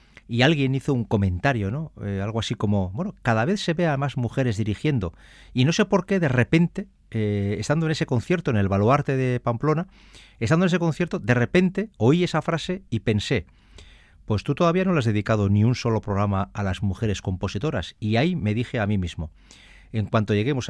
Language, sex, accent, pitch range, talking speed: Spanish, male, Spanish, 105-140 Hz, 210 wpm